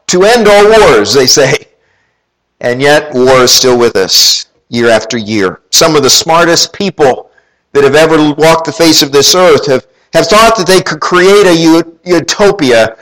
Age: 50-69